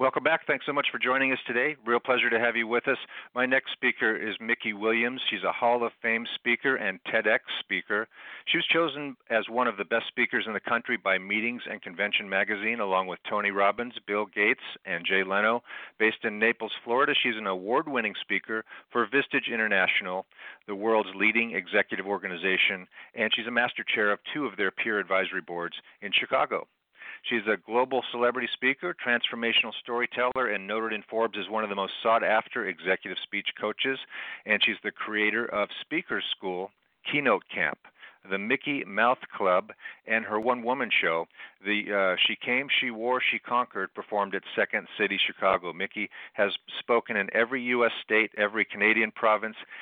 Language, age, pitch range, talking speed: English, 50-69, 105-120 Hz, 175 wpm